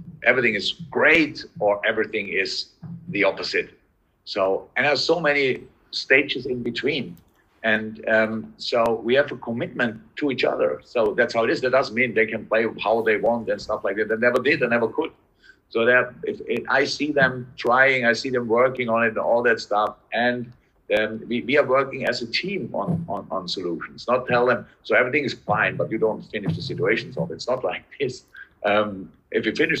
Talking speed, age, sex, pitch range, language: 210 wpm, 50-69, male, 110-145 Hz, English